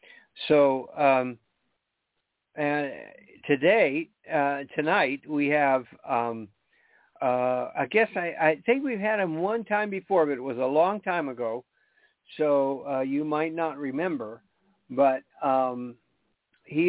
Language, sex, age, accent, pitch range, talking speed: English, male, 50-69, American, 125-165 Hz, 130 wpm